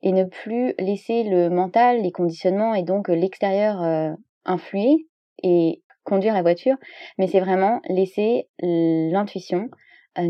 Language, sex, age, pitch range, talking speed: French, female, 20-39, 180-220 Hz, 135 wpm